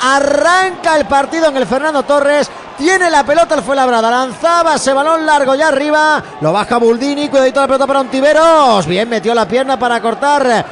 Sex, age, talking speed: male, 30-49, 190 wpm